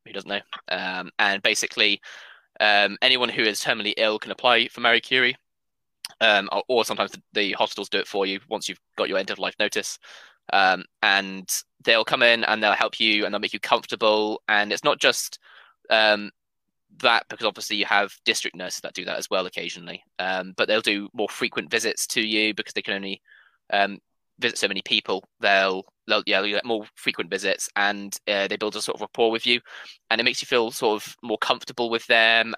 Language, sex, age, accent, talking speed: English, male, 20-39, British, 210 wpm